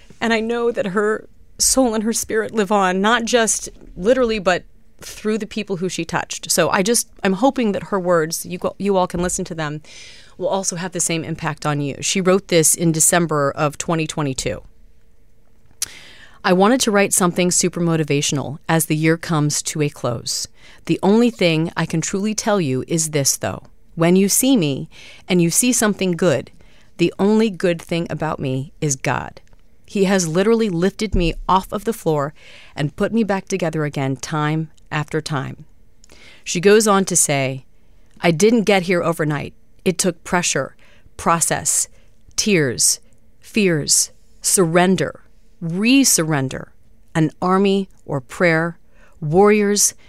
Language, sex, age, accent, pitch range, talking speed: English, female, 30-49, American, 160-200 Hz, 160 wpm